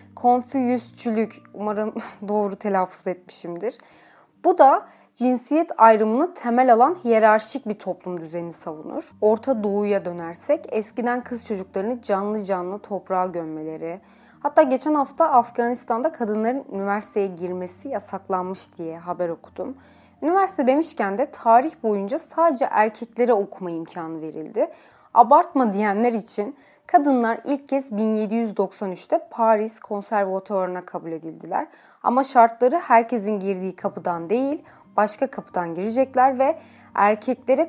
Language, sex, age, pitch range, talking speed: Turkish, female, 30-49, 200-255 Hz, 110 wpm